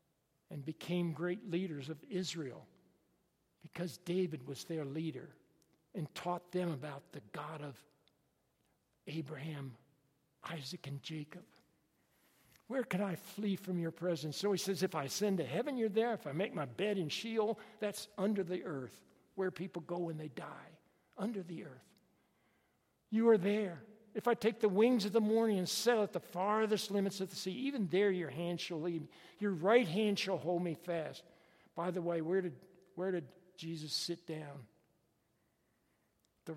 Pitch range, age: 155-195 Hz, 60-79